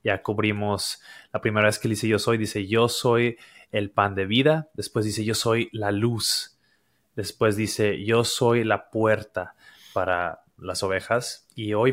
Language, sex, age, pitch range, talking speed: Spanish, male, 20-39, 105-120 Hz, 165 wpm